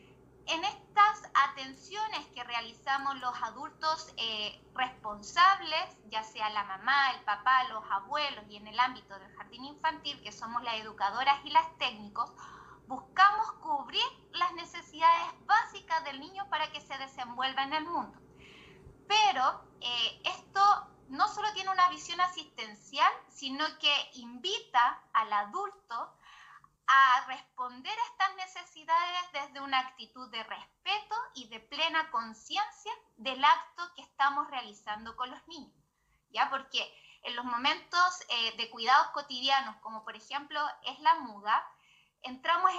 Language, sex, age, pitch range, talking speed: Spanish, female, 20-39, 240-345 Hz, 135 wpm